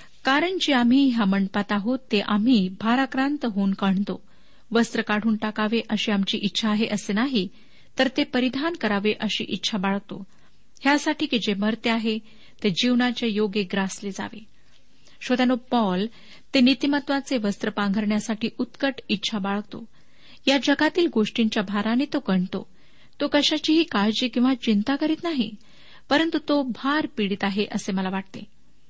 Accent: native